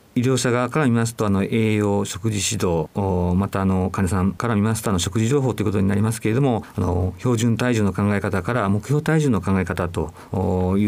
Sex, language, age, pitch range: male, Japanese, 50-69, 90-115 Hz